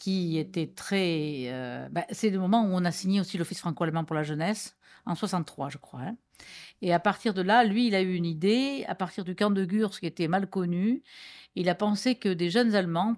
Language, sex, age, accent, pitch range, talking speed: French, female, 50-69, French, 165-215 Hz, 230 wpm